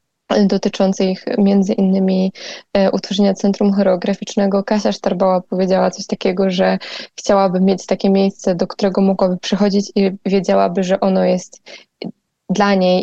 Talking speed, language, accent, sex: 130 wpm, Polish, native, female